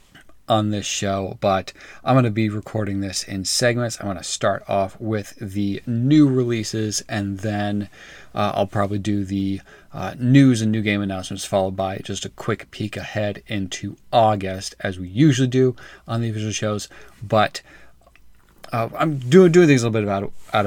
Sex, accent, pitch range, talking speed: male, American, 95-115 Hz, 180 wpm